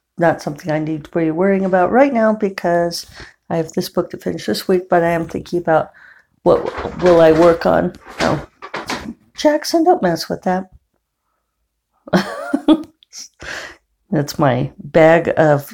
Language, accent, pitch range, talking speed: English, American, 160-205 Hz, 150 wpm